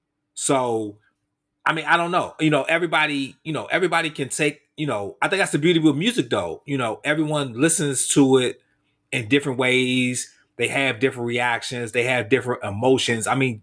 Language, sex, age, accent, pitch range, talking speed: English, male, 30-49, American, 120-150 Hz, 190 wpm